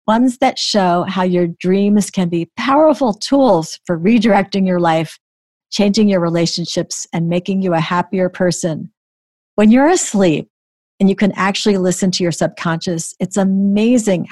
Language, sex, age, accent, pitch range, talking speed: English, female, 50-69, American, 170-215 Hz, 150 wpm